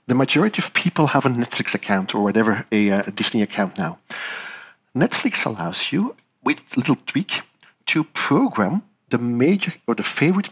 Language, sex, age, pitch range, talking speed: English, male, 50-69, 115-185 Hz, 165 wpm